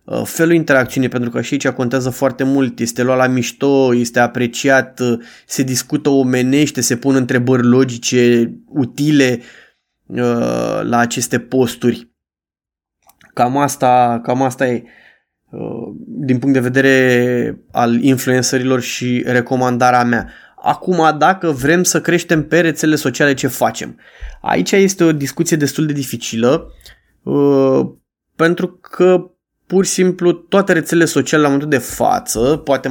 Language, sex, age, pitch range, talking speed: Romanian, male, 20-39, 125-160 Hz, 130 wpm